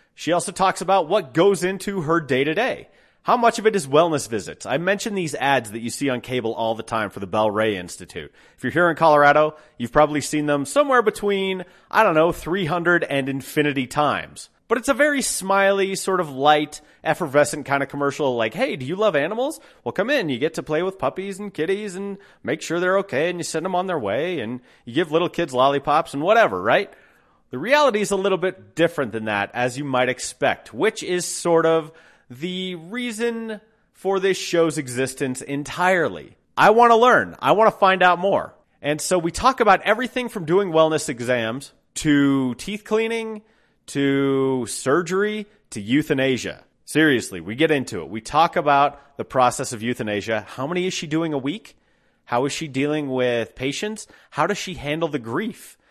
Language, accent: English, American